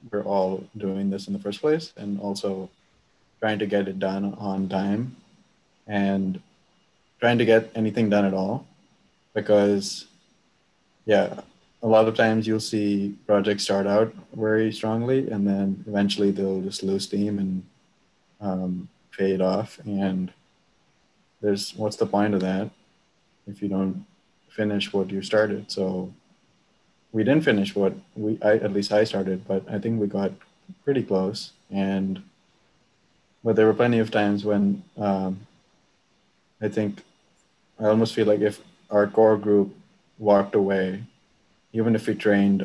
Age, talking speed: 20-39, 150 wpm